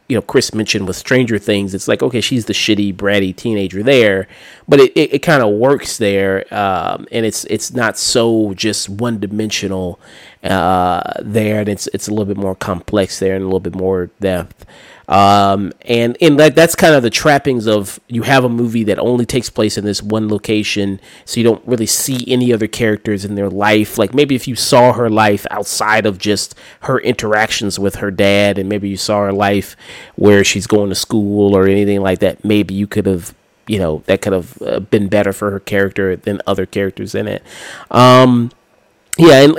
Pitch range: 100-120 Hz